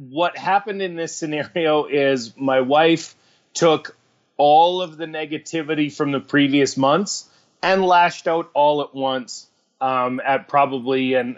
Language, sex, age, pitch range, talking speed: English, male, 30-49, 125-150 Hz, 140 wpm